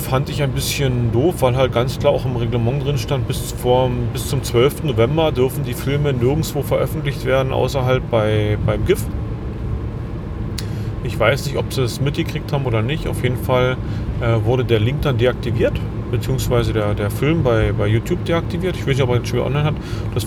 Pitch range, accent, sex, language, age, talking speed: 110-125 Hz, German, male, German, 30-49, 200 wpm